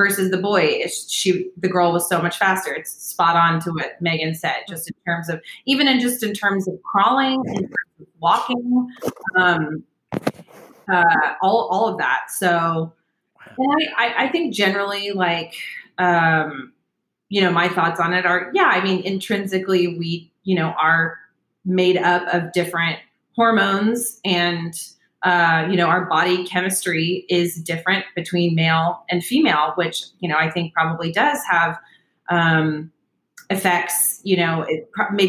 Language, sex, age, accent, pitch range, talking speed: English, female, 30-49, American, 170-210 Hz, 160 wpm